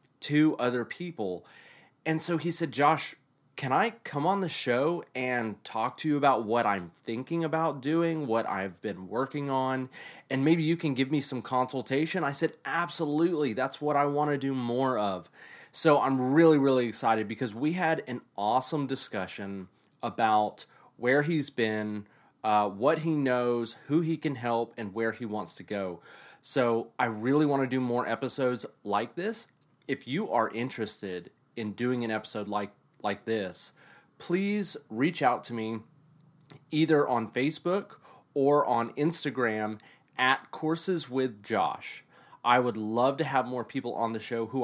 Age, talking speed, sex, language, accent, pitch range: 30-49, 165 wpm, male, English, American, 110-150 Hz